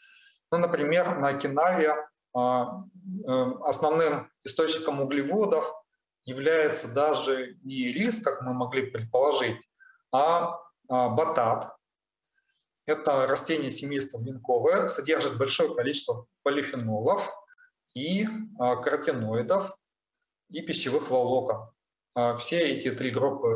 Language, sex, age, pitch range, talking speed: Russian, male, 30-49, 125-195 Hz, 85 wpm